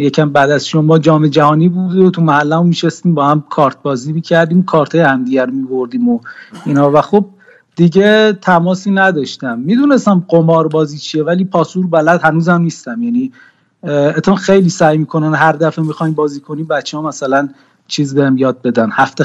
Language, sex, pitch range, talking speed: Persian, male, 150-195 Hz, 175 wpm